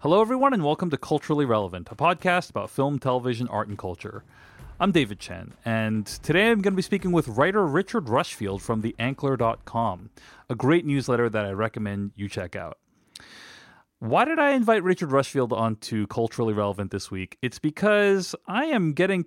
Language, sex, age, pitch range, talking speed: English, male, 30-49, 110-155 Hz, 180 wpm